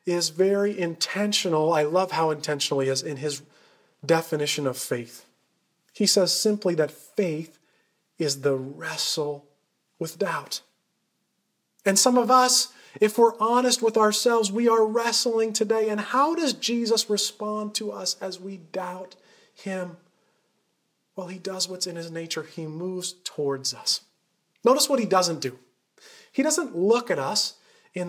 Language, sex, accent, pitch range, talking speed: English, male, American, 150-200 Hz, 150 wpm